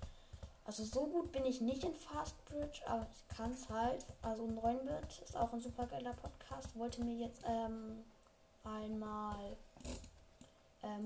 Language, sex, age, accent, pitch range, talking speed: German, female, 10-29, German, 225-260 Hz, 150 wpm